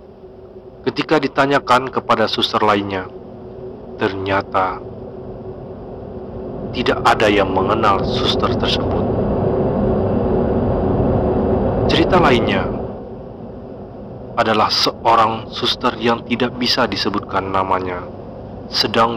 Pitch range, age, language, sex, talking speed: 95-125 Hz, 40-59, Indonesian, male, 70 wpm